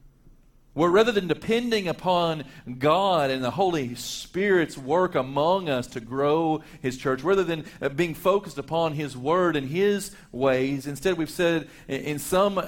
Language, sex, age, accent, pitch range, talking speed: English, male, 40-59, American, 105-155 Hz, 150 wpm